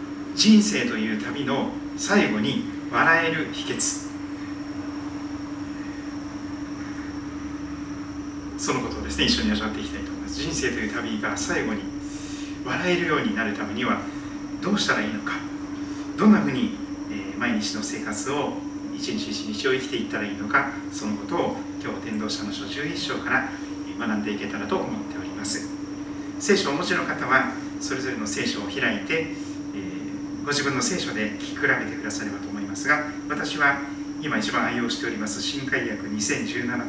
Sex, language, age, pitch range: male, Japanese, 40-59, 275-295 Hz